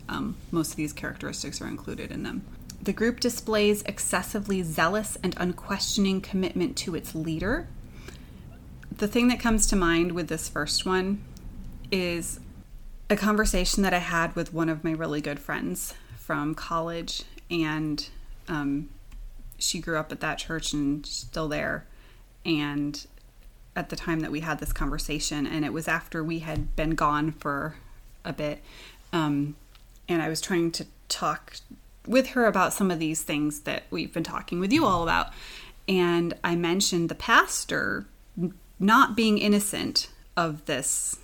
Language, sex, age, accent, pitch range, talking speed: English, female, 30-49, American, 150-185 Hz, 155 wpm